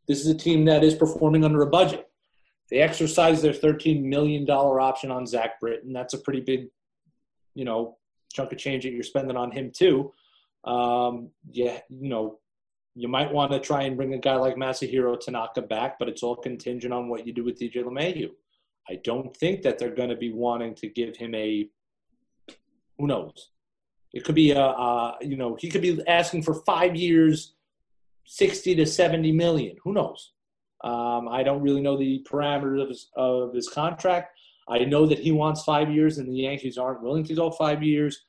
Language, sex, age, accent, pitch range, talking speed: English, male, 30-49, American, 125-155 Hz, 195 wpm